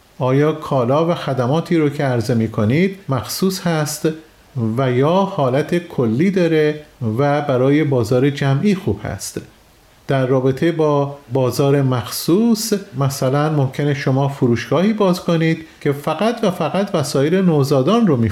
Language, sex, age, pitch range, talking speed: Persian, male, 40-59, 130-165 Hz, 130 wpm